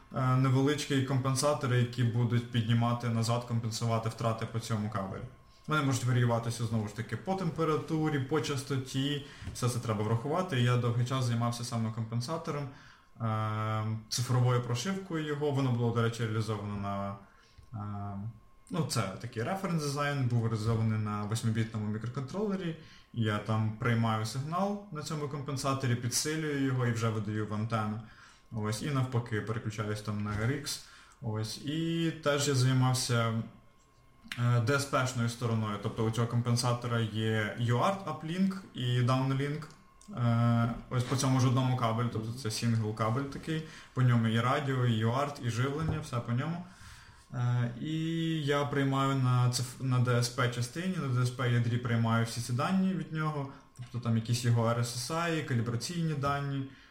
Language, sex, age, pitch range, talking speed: Ukrainian, male, 20-39, 115-140 Hz, 135 wpm